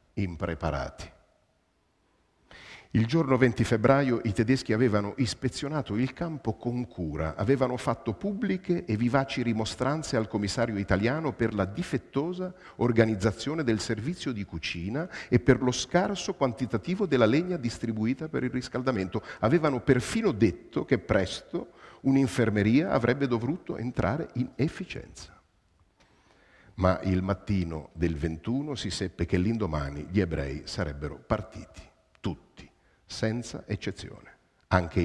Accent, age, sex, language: native, 50-69, male, Italian